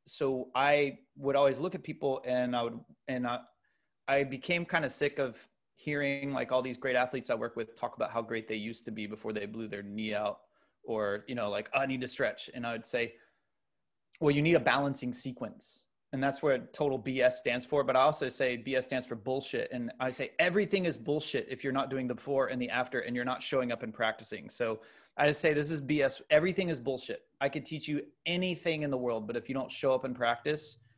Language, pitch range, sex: English, 120-140 Hz, male